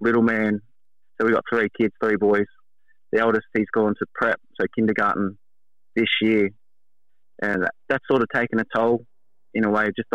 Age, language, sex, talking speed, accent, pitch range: 20-39, English, male, 175 wpm, Australian, 105-125 Hz